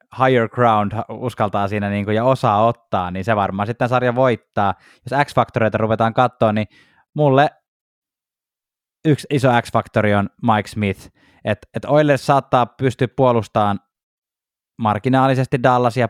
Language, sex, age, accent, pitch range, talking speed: Finnish, male, 20-39, native, 100-125 Hz, 125 wpm